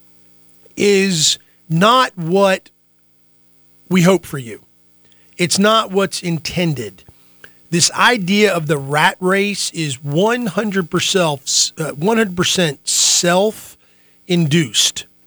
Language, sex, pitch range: English, male, 140-195 Hz